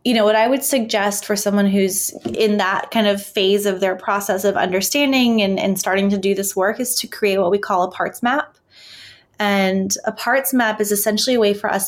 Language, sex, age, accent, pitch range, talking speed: English, female, 20-39, American, 190-225 Hz, 225 wpm